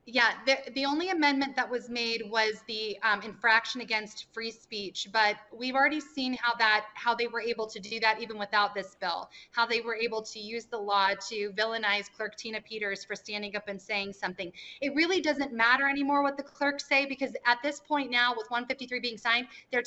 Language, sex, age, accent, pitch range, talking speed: English, female, 30-49, American, 215-270 Hz, 210 wpm